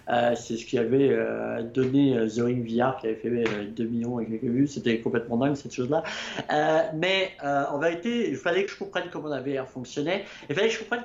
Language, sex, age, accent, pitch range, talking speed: French, male, 50-69, French, 125-170 Hz, 235 wpm